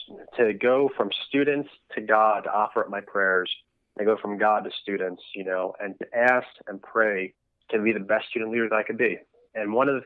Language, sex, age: English, male, 20-39